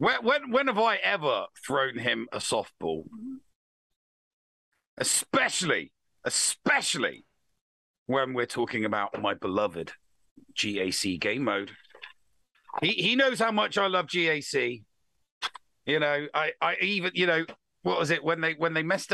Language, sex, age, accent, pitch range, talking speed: English, male, 50-69, British, 130-185 Hz, 140 wpm